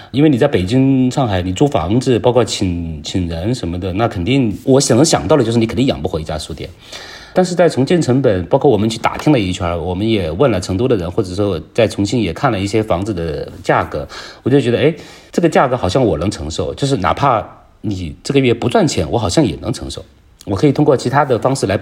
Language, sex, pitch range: Chinese, male, 95-130 Hz